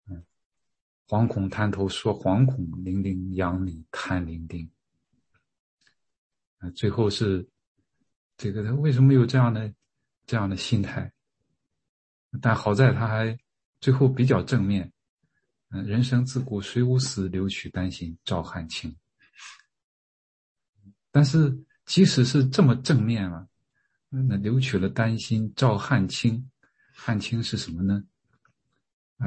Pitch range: 90-115 Hz